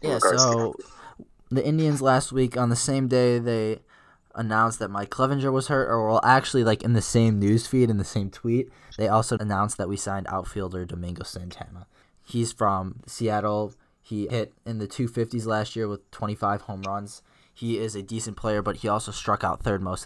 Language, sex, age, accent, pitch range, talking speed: English, male, 20-39, American, 95-115 Hz, 195 wpm